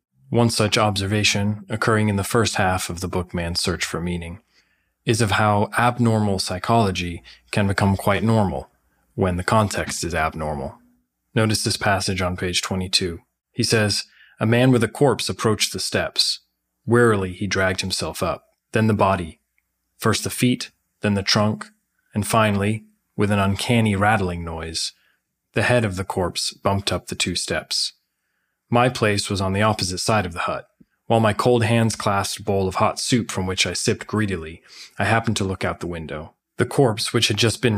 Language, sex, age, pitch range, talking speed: English, male, 20-39, 95-110 Hz, 180 wpm